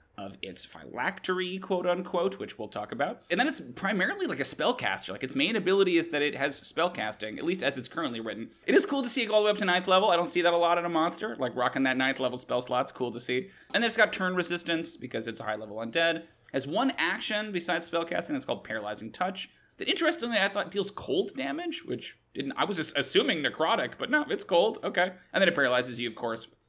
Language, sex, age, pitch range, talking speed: English, male, 30-49, 125-200 Hz, 245 wpm